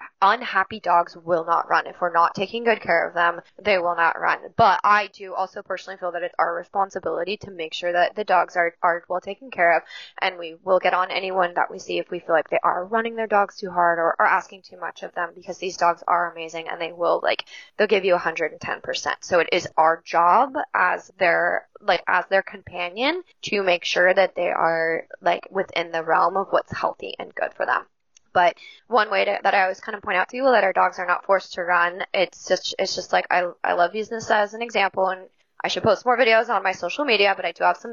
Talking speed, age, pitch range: 245 wpm, 10-29, 175-195 Hz